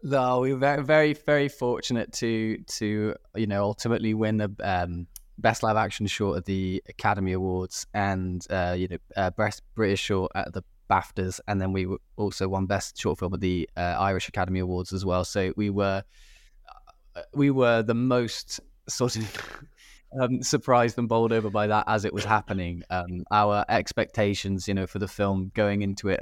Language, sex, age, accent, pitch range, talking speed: English, male, 20-39, British, 95-110 Hz, 190 wpm